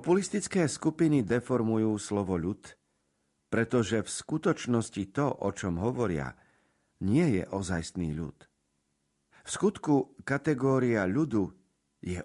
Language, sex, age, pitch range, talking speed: Slovak, male, 50-69, 90-125 Hz, 105 wpm